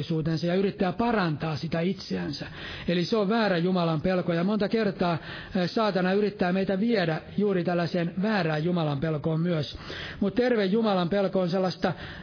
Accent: native